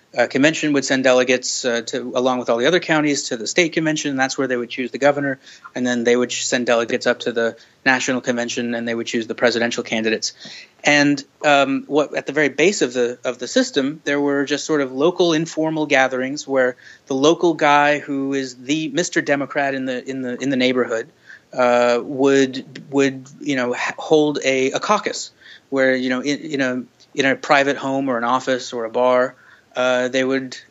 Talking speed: 210 wpm